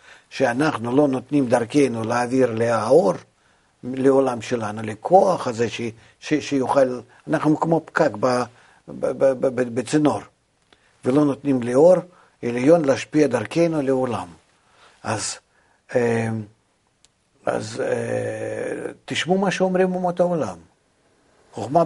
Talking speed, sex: 100 wpm, male